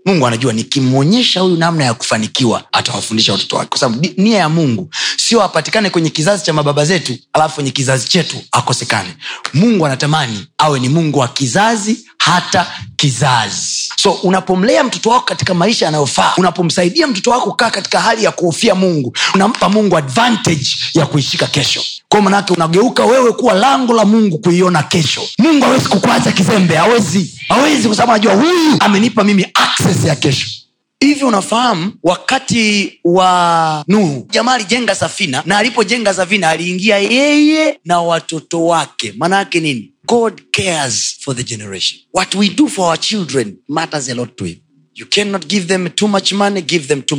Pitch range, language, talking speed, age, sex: 140-215 Hz, Swahili, 160 wpm, 30-49, male